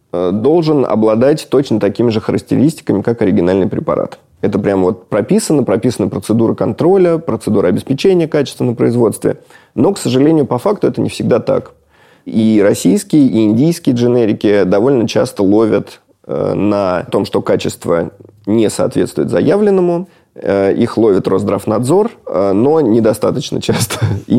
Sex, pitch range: male, 100-135 Hz